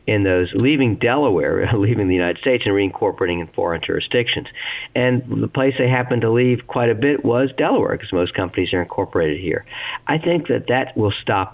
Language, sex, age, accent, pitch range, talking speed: English, male, 50-69, American, 95-120 Hz, 190 wpm